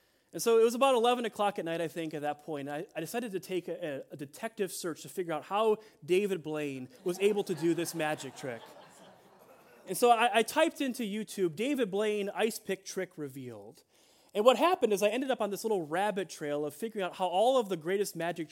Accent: American